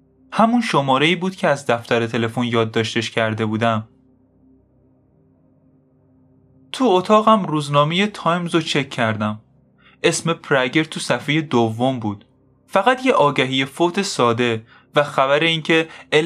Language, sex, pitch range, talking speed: Persian, male, 120-165 Hz, 120 wpm